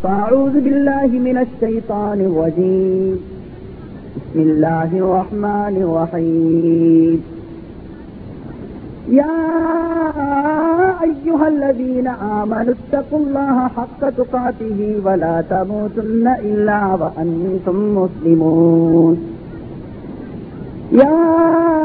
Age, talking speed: 50-69, 65 wpm